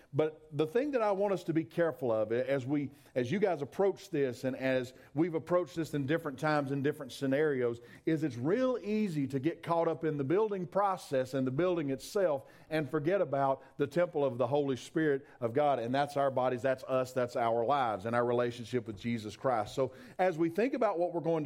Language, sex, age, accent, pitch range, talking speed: English, male, 40-59, American, 135-180 Hz, 220 wpm